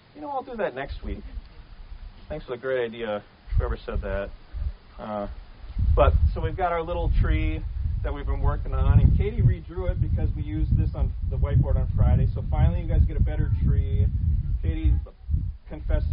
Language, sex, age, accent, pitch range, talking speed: English, male, 30-49, American, 80-110 Hz, 190 wpm